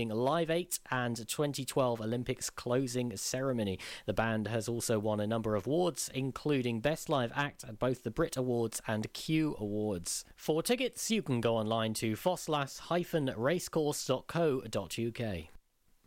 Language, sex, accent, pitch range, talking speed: English, male, British, 115-165 Hz, 135 wpm